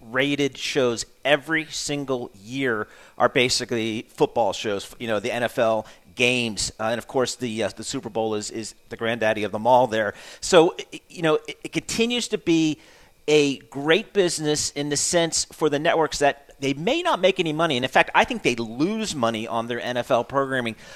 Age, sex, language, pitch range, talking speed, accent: 40-59, male, English, 115-145 Hz, 190 wpm, American